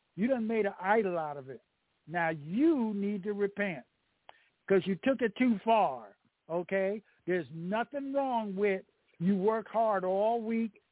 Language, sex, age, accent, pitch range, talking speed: English, male, 60-79, American, 190-235 Hz, 160 wpm